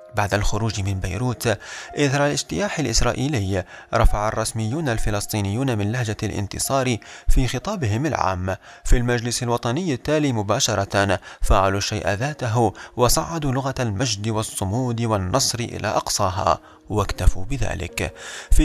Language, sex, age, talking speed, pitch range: Arabic, male, 30-49, 110 wpm, 100-130 Hz